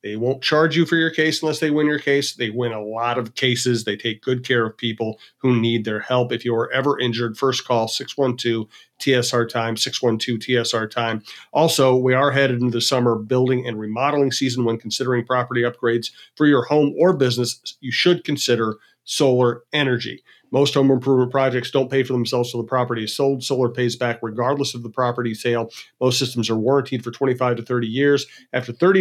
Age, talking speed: 40-59, 195 wpm